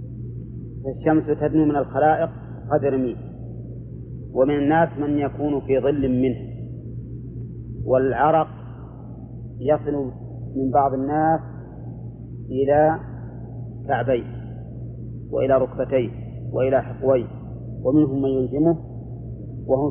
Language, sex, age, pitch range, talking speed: Arabic, male, 30-49, 120-145 Hz, 85 wpm